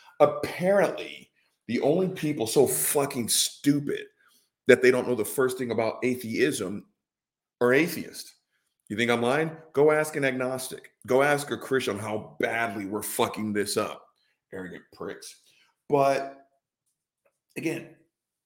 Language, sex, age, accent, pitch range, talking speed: English, male, 40-59, American, 120-155 Hz, 130 wpm